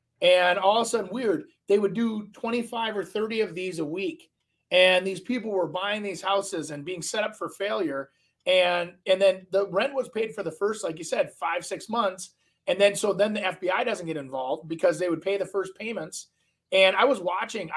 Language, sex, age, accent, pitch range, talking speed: English, male, 30-49, American, 170-215 Hz, 220 wpm